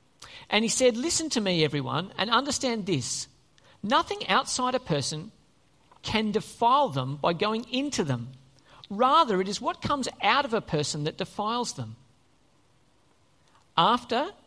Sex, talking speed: male, 140 wpm